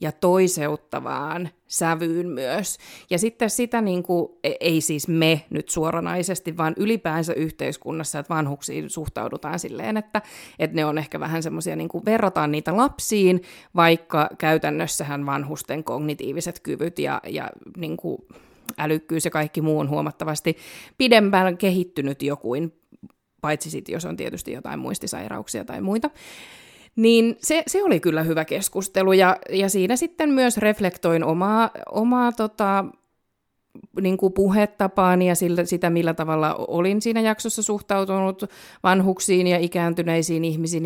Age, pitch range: 30-49, 160-200 Hz